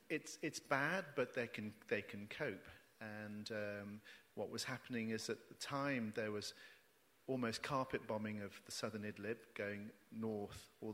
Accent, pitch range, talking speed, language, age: British, 105-115 Hz, 165 wpm, English, 40-59